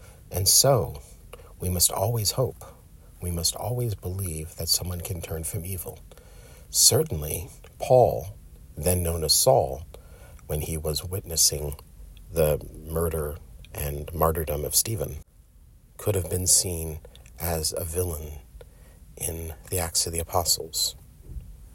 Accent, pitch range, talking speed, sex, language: American, 80-95 Hz, 125 wpm, male, English